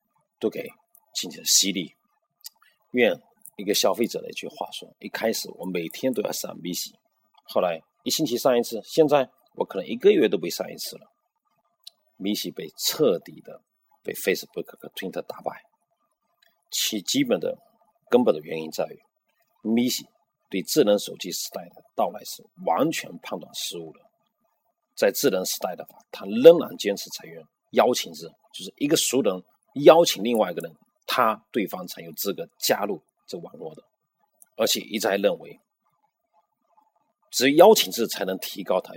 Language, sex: Chinese, male